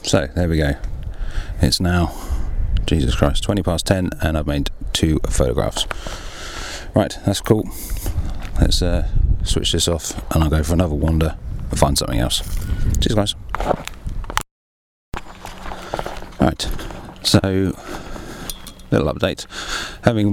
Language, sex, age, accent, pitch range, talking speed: English, male, 30-49, British, 80-95 Hz, 120 wpm